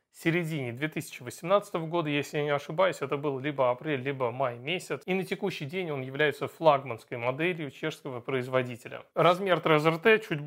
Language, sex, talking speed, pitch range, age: Russian, male, 165 wpm, 140-175 Hz, 30-49